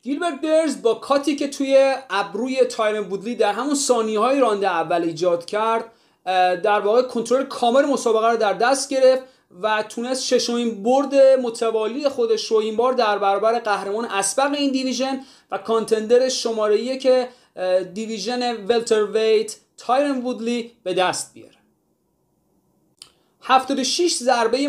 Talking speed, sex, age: 135 wpm, male, 30-49